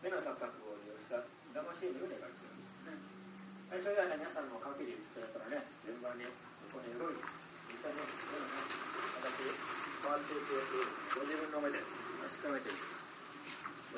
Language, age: Japanese, 40-59